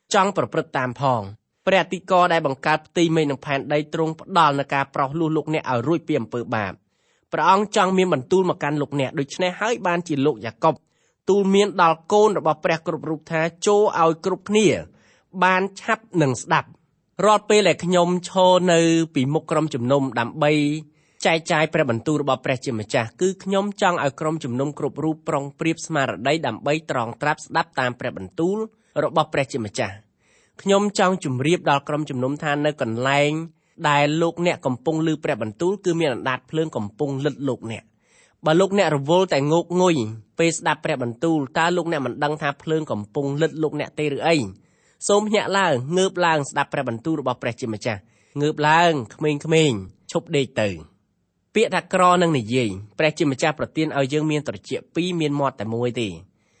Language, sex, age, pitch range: English, male, 30-49, 135-170 Hz